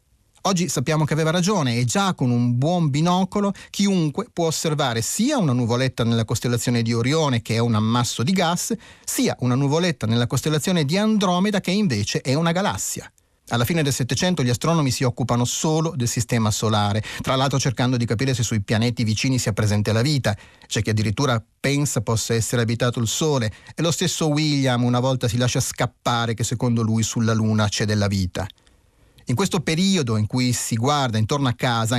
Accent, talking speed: native, 190 wpm